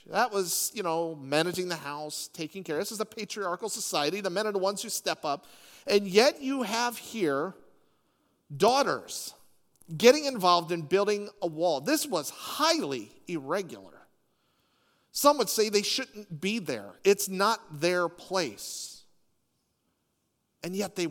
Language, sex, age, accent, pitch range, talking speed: English, male, 40-59, American, 170-225 Hz, 150 wpm